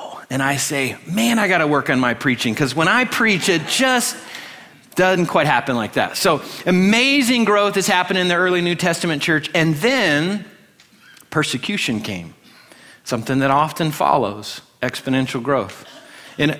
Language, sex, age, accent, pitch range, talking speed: English, male, 40-59, American, 135-180 Hz, 160 wpm